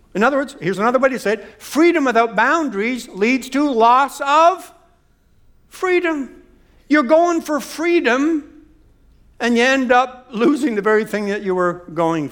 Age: 60-79